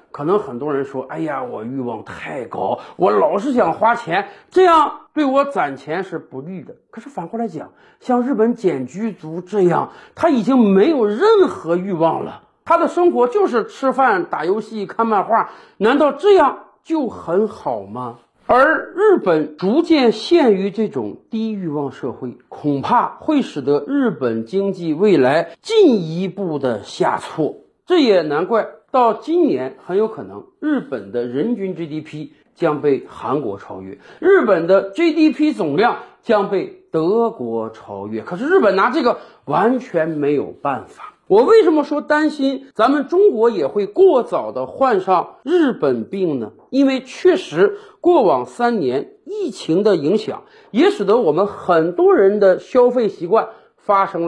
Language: Chinese